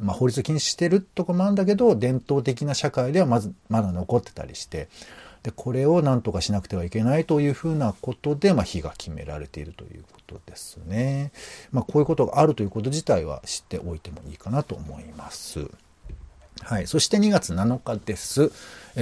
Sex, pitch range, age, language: male, 95-150 Hz, 50-69, Japanese